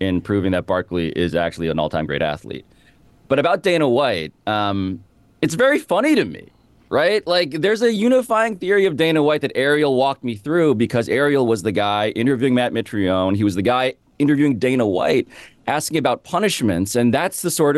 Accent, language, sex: American, English, male